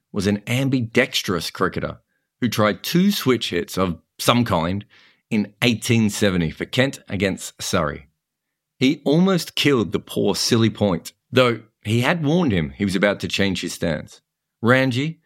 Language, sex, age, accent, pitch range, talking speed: English, male, 40-59, Australian, 95-125 Hz, 150 wpm